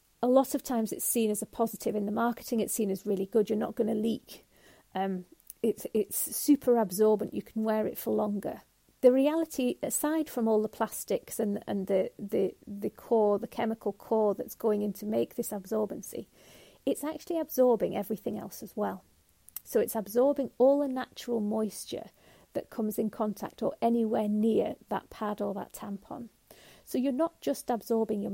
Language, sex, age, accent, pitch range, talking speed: English, female, 40-59, British, 210-245 Hz, 185 wpm